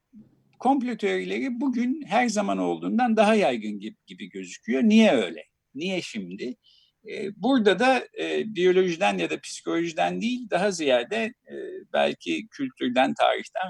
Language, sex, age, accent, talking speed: Turkish, male, 60-79, native, 125 wpm